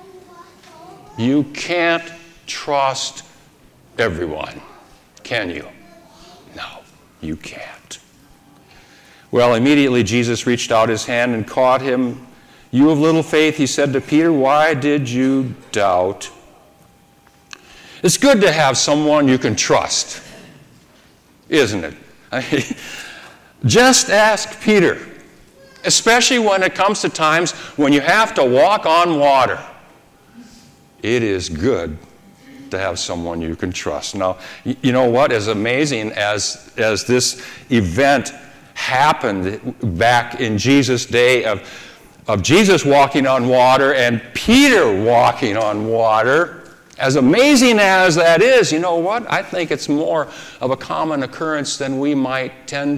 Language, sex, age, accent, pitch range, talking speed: English, male, 60-79, American, 125-165 Hz, 125 wpm